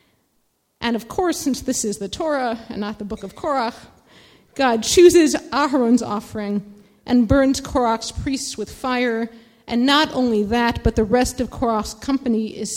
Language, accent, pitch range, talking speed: English, American, 220-275 Hz, 165 wpm